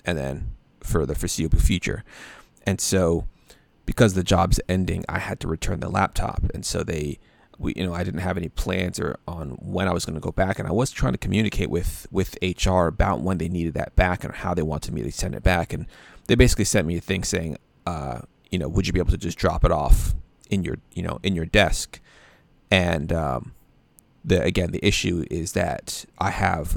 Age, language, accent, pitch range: 30-49, English, American, 80-95 Hz